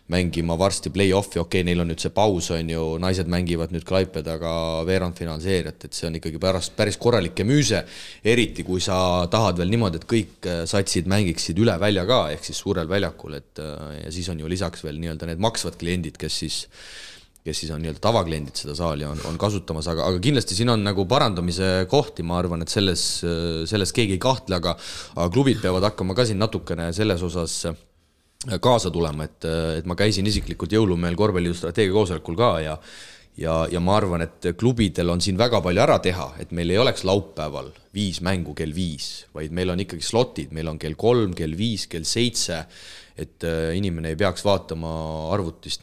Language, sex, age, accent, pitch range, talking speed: English, male, 30-49, Finnish, 80-100 Hz, 185 wpm